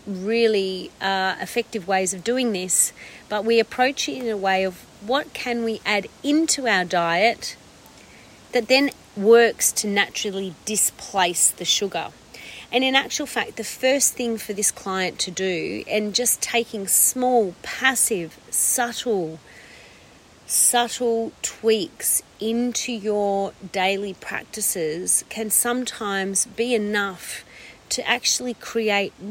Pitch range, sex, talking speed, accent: 185-230 Hz, female, 125 wpm, Australian